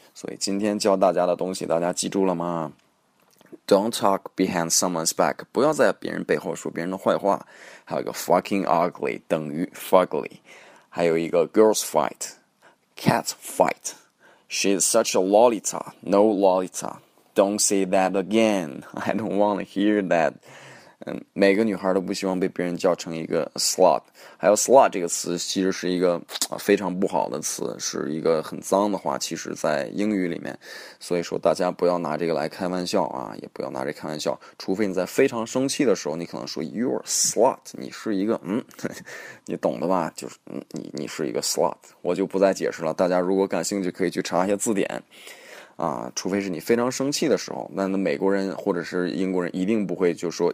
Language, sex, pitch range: Chinese, male, 90-100 Hz